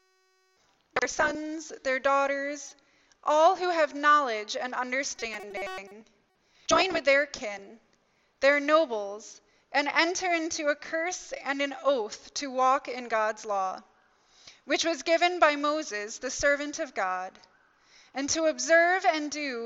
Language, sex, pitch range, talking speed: English, female, 230-305 Hz, 130 wpm